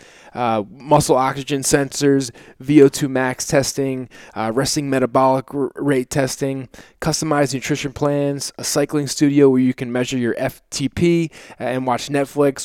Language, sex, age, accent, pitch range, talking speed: English, male, 20-39, American, 120-140 Hz, 135 wpm